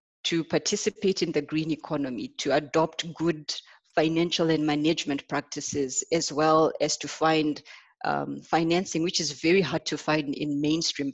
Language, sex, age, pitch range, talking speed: English, female, 30-49, 145-170 Hz, 150 wpm